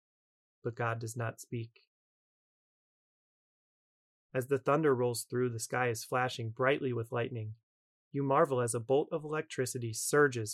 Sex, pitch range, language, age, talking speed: male, 115-130 Hz, English, 30-49, 140 wpm